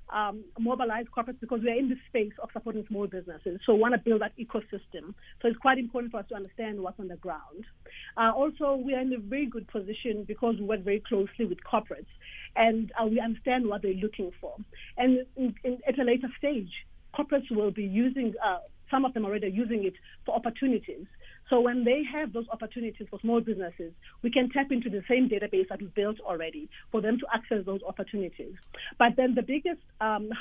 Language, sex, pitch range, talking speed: English, female, 210-245 Hz, 210 wpm